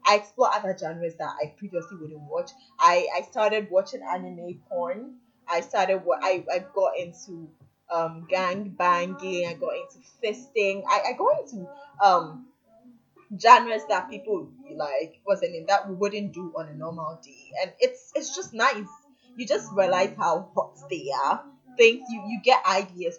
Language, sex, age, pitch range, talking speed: English, female, 10-29, 180-275 Hz, 170 wpm